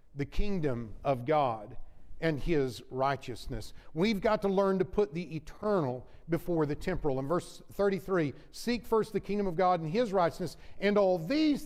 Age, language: 50-69, English